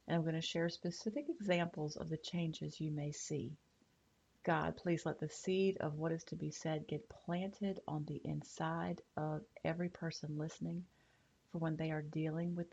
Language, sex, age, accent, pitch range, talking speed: English, female, 40-59, American, 150-185 Hz, 185 wpm